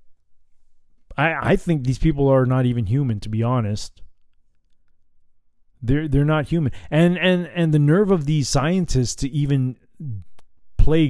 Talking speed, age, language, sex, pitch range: 145 wpm, 20-39, English, male, 105-160 Hz